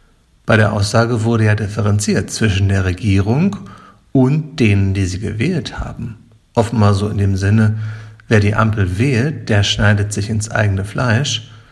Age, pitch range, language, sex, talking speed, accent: 50-69, 105-130 Hz, German, male, 155 wpm, German